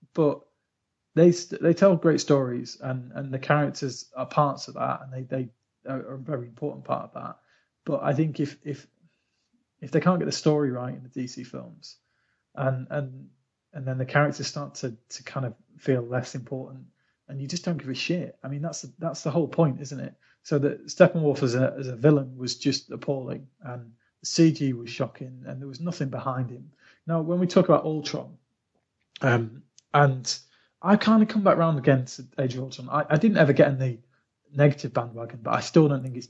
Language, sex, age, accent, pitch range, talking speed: English, male, 30-49, British, 125-155 Hz, 210 wpm